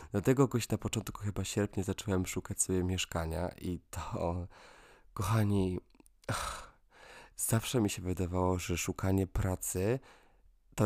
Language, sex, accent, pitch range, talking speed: Polish, male, native, 95-105 Hz, 120 wpm